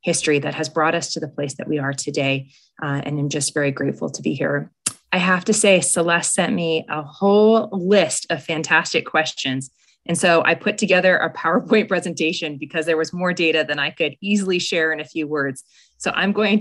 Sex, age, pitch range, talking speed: female, 20-39, 150-200 Hz, 215 wpm